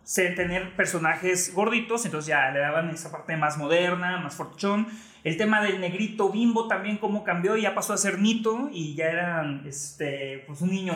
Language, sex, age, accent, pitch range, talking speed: Spanish, male, 30-49, Mexican, 165-215 Hz, 180 wpm